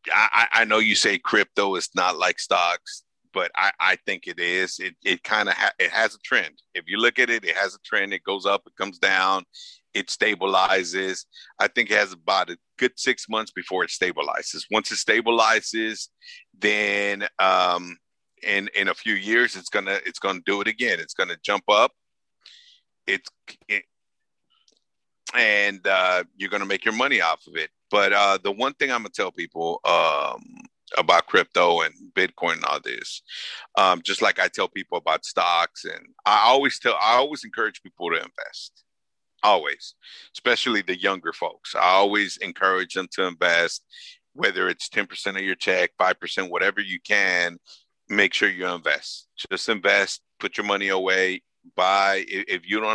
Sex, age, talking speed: male, 50-69, 180 wpm